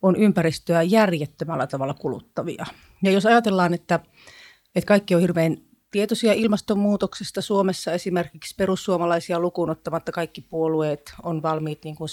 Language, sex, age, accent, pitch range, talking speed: Finnish, female, 30-49, native, 165-200 Hz, 125 wpm